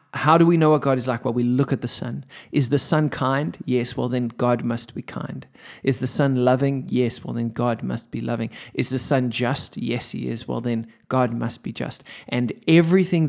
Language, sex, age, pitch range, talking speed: English, male, 20-39, 125-150 Hz, 230 wpm